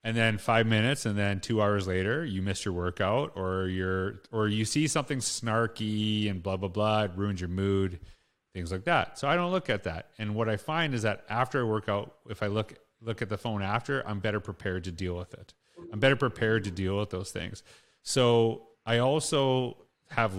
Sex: male